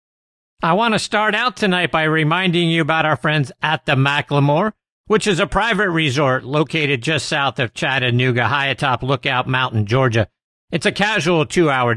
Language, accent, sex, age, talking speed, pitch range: English, American, male, 50-69, 170 wpm, 130-175 Hz